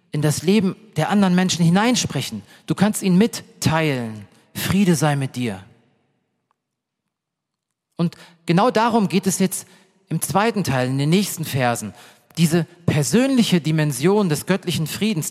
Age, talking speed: 40-59, 135 wpm